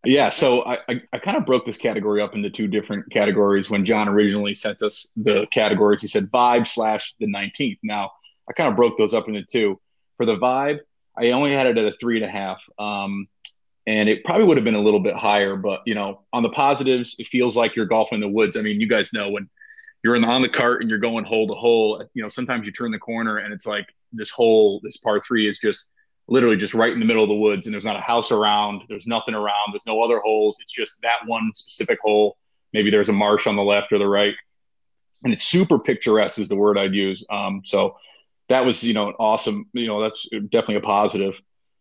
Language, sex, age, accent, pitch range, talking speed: English, male, 30-49, American, 105-120 Hz, 245 wpm